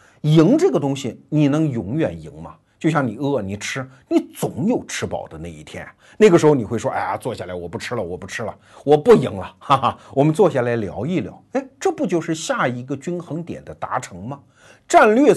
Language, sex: Chinese, male